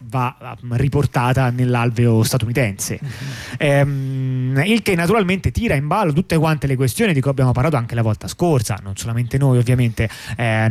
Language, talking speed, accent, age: Italian, 155 wpm, native, 30-49